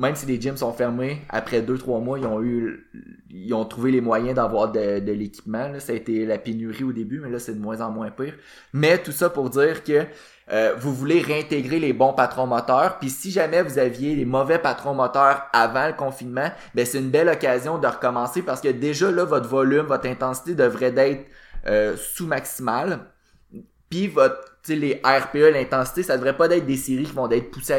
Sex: male